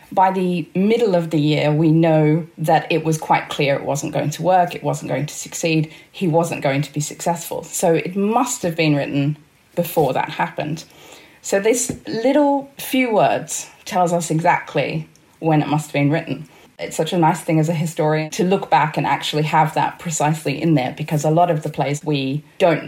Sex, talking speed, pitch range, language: female, 205 wpm, 150-175 Hz, English